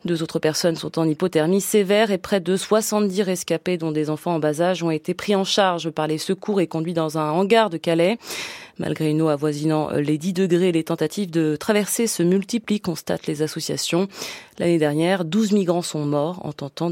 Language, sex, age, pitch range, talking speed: French, female, 30-49, 165-220 Hz, 200 wpm